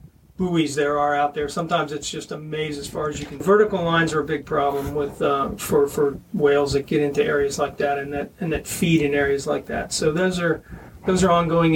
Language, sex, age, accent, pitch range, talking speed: English, male, 40-59, American, 150-180 Hz, 235 wpm